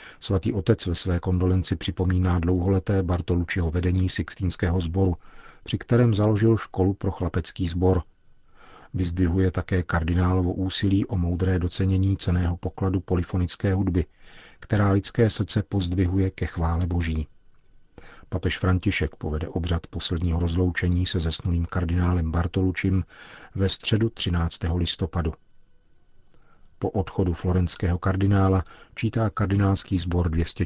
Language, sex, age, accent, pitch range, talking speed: Czech, male, 40-59, native, 90-100 Hz, 115 wpm